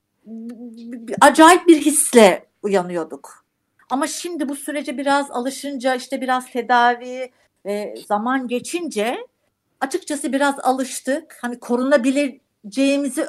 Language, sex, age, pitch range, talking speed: Turkish, female, 60-79, 220-280 Hz, 90 wpm